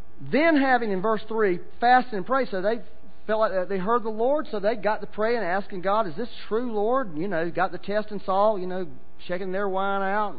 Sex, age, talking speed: male, 40-59, 235 wpm